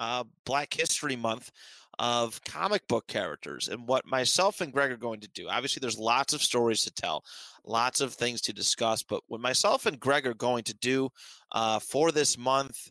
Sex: male